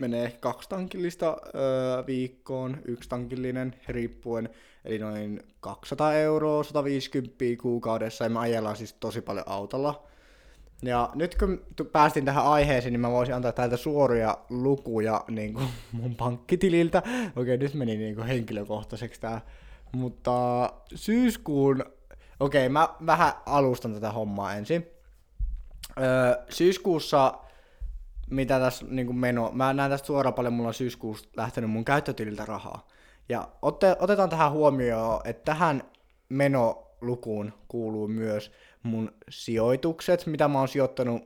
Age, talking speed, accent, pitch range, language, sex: 20-39, 125 wpm, native, 115-145 Hz, Finnish, male